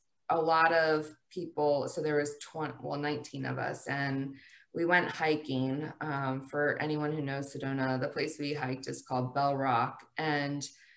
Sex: female